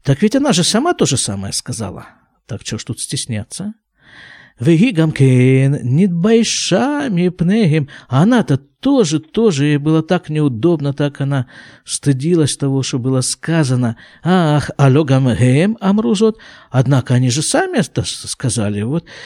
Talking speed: 130 wpm